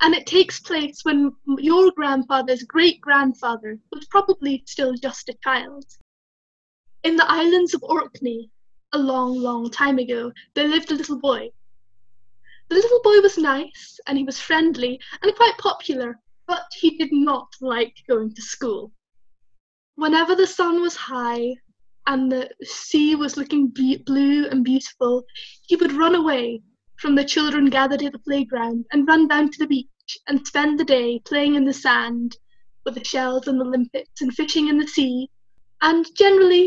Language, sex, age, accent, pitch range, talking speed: English, female, 10-29, British, 250-320 Hz, 165 wpm